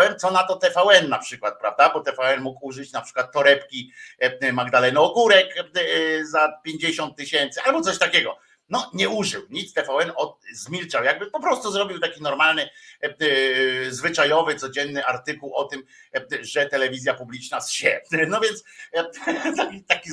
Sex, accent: male, native